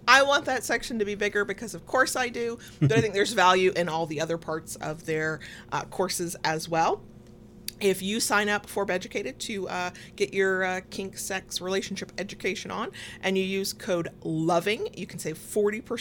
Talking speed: 200 wpm